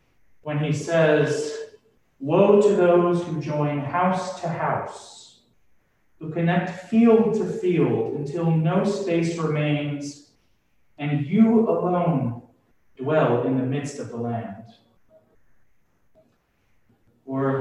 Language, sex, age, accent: English, male, 30-49, American